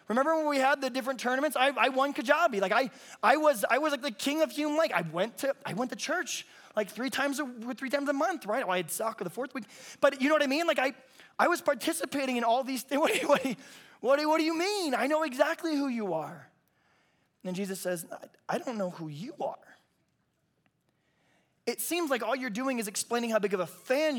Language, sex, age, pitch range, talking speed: English, male, 20-39, 200-275 Hz, 240 wpm